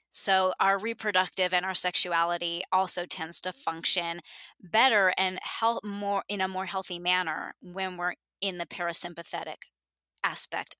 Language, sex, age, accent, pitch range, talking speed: English, female, 20-39, American, 180-215 Hz, 140 wpm